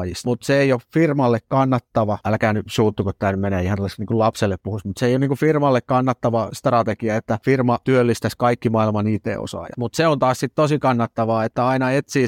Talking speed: 185 wpm